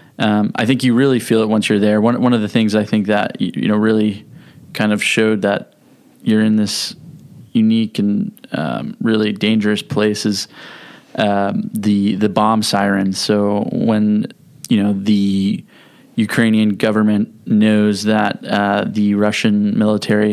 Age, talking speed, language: 20-39, 155 wpm, English